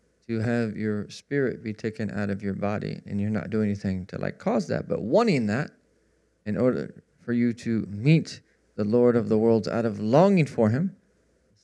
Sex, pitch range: male, 95-110 Hz